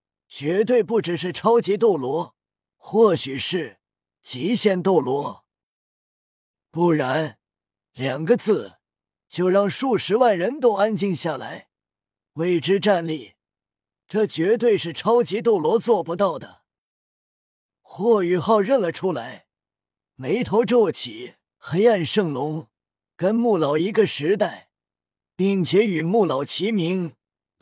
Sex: male